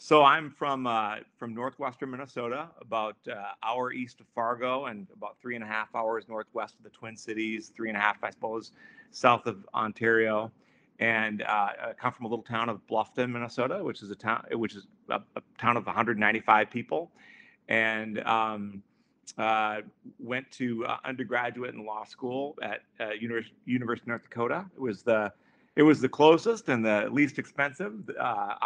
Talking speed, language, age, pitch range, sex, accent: 180 wpm, English, 40-59, 110-130 Hz, male, American